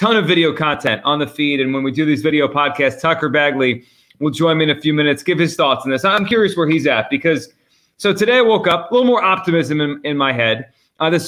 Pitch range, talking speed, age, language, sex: 125-170 Hz, 265 wpm, 30-49, English, male